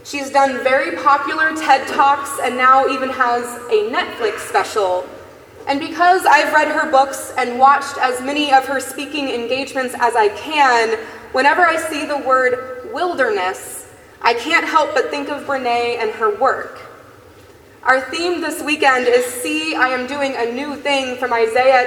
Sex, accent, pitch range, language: female, American, 255-330 Hz, English